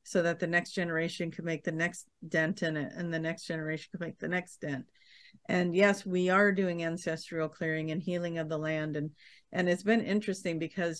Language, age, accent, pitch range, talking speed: English, 50-69, American, 160-195 Hz, 215 wpm